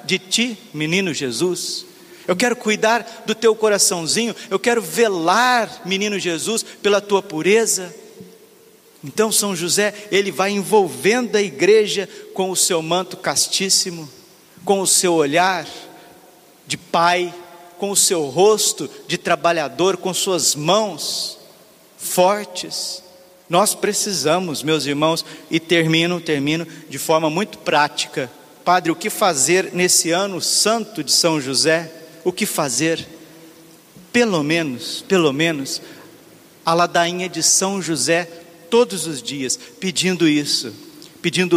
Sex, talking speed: male, 125 wpm